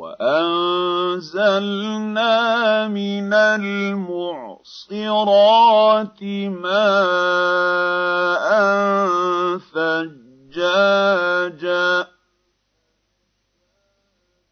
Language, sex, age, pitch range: Arabic, male, 50-69, 180-215 Hz